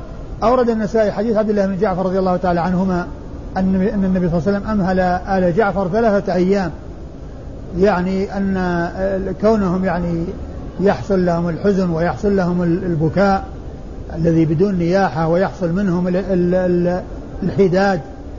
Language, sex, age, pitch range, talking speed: Arabic, male, 50-69, 180-205 Hz, 125 wpm